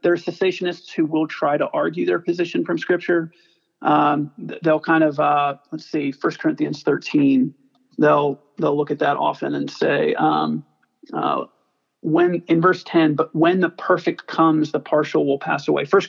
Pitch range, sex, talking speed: 145-185 Hz, male, 175 wpm